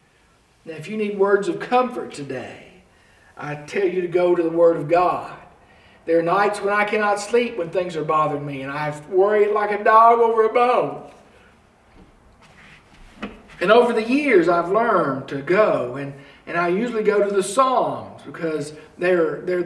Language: English